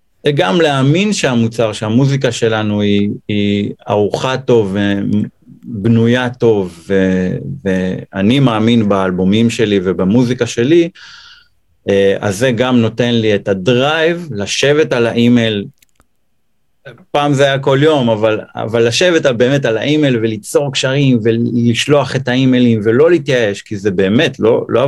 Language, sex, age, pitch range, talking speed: Hebrew, male, 30-49, 105-130 Hz, 125 wpm